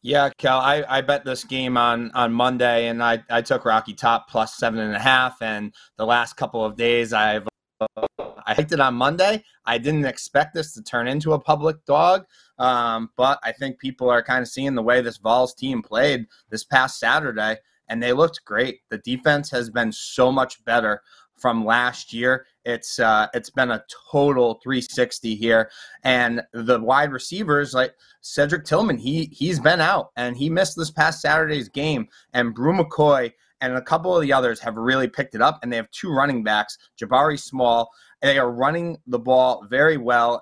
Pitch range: 120-160 Hz